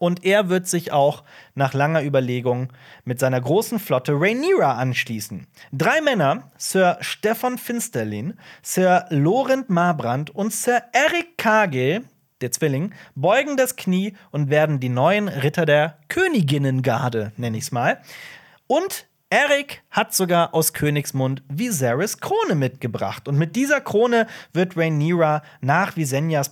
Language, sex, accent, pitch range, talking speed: German, male, German, 130-195 Hz, 135 wpm